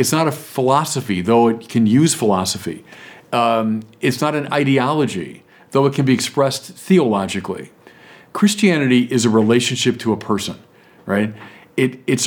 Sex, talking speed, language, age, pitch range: male, 140 wpm, English, 40-59, 115-155 Hz